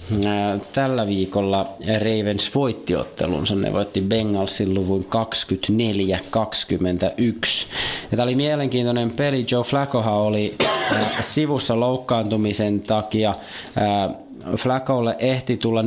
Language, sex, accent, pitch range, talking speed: Finnish, male, native, 95-120 Hz, 85 wpm